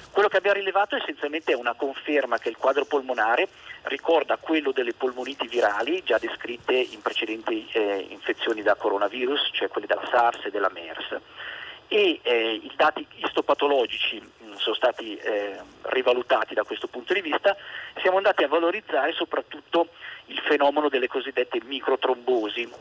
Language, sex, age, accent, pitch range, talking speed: Italian, male, 40-59, native, 125-190 Hz, 155 wpm